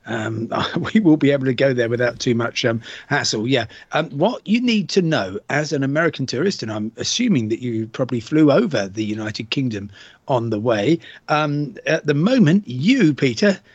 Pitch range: 120-160 Hz